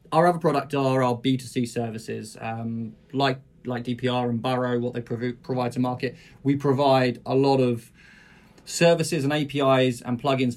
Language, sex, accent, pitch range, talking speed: English, male, British, 125-140 Hz, 165 wpm